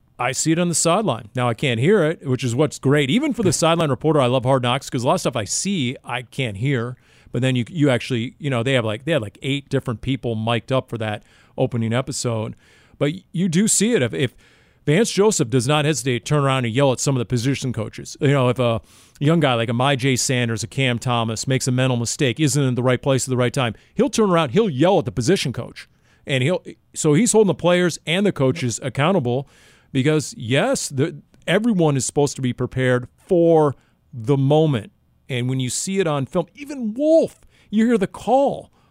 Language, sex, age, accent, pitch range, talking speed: English, male, 40-59, American, 125-165 Hz, 230 wpm